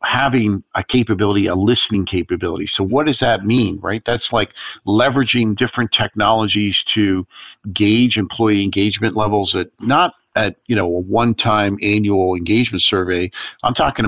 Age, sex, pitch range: 50-69, male, 95-115 Hz